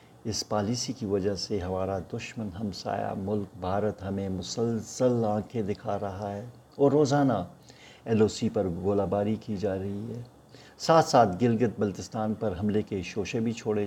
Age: 50-69